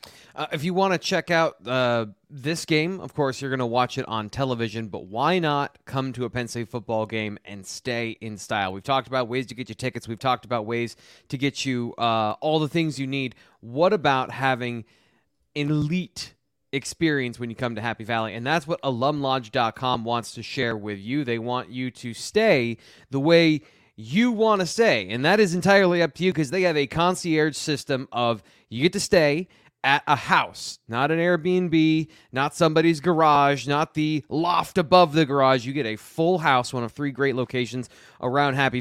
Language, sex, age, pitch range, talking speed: English, male, 30-49, 120-160 Hz, 200 wpm